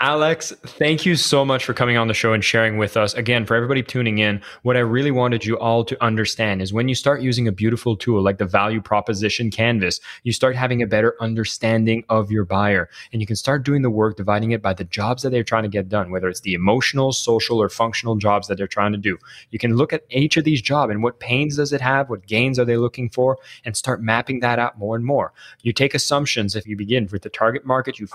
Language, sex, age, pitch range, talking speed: English, male, 20-39, 105-130 Hz, 255 wpm